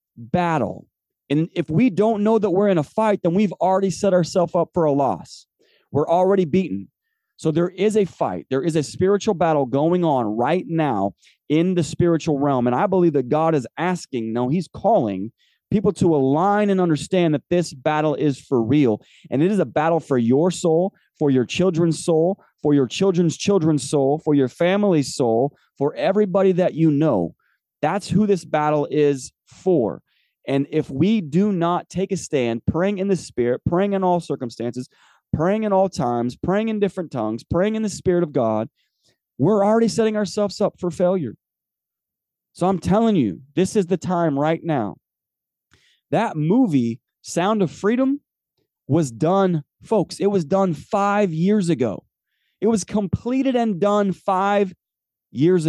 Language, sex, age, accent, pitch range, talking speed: English, male, 30-49, American, 145-195 Hz, 175 wpm